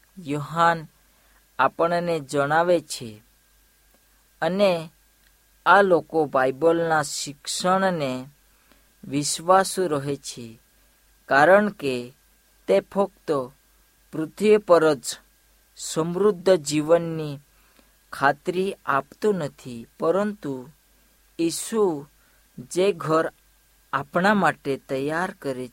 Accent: Indian